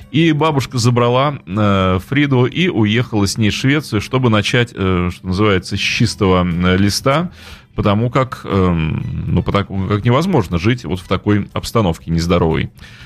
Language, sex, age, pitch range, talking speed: Russian, male, 30-49, 100-135 Hz, 125 wpm